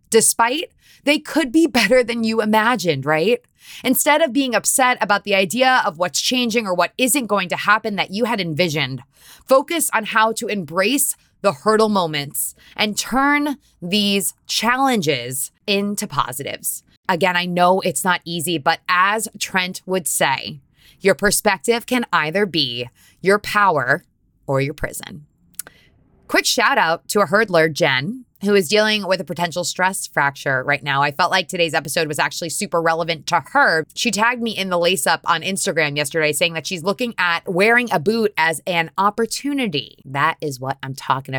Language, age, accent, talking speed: English, 20-39, American, 170 wpm